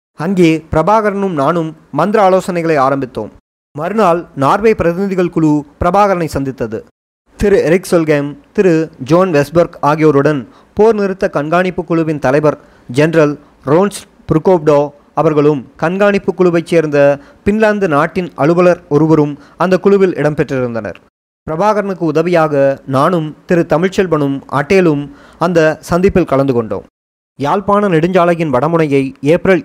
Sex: male